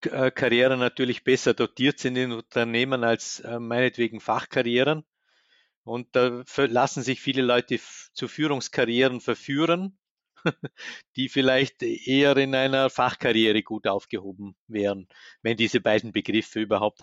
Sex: male